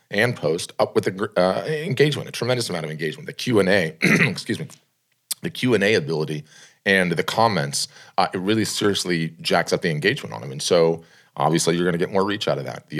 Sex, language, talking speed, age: male, English, 195 wpm, 40-59